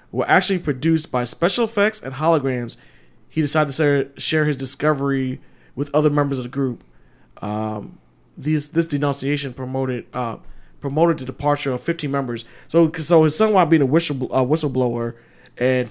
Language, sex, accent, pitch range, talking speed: English, male, American, 130-160 Hz, 165 wpm